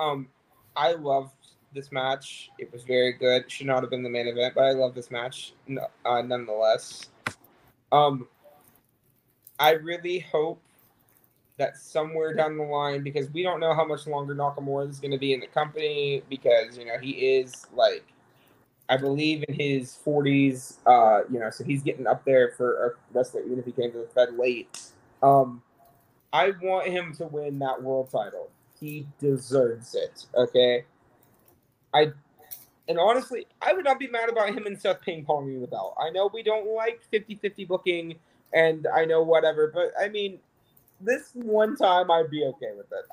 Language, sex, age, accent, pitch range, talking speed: English, male, 20-39, American, 130-165 Hz, 180 wpm